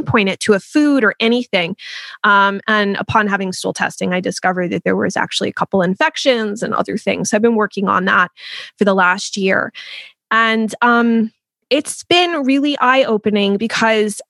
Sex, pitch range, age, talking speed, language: female, 200-260 Hz, 20-39, 175 wpm, English